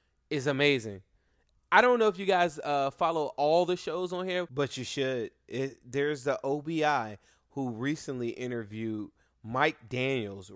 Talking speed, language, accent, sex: 150 wpm, English, American, male